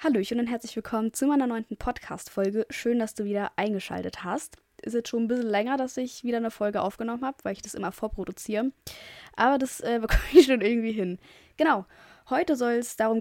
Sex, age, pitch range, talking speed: female, 20-39, 200-255 Hz, 205 wpm